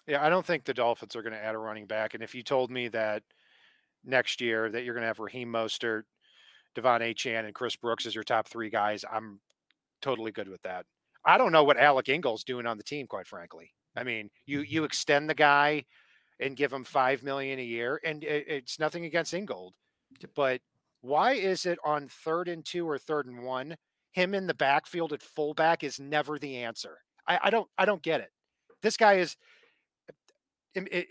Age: 40-59